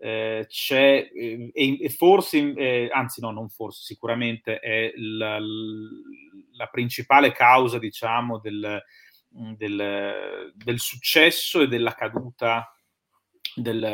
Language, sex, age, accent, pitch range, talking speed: Italian, male, 30-49, native, 105-125 Hz, 105 wpm